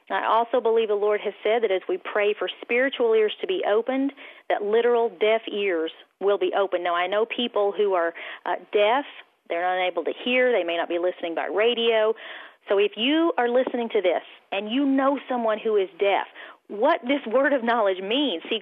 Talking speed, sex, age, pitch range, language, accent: 205 wpm, female, 40-59, 200-270 Hz, English, American